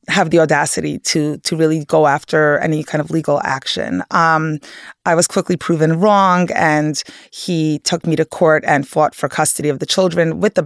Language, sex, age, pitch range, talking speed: English, female, 30-49, 150-175 Hz, 190 wpm